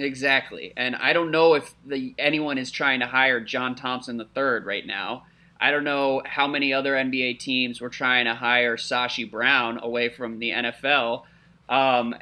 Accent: American